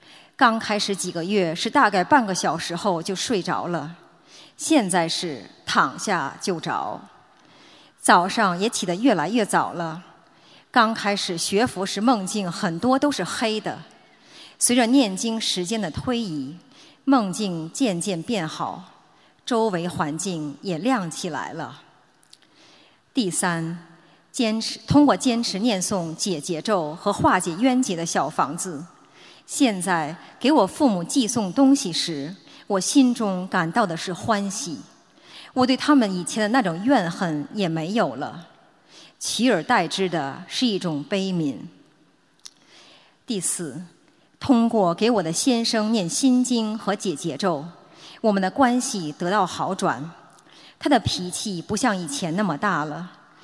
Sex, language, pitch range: male, Chinese, 175-235 Hz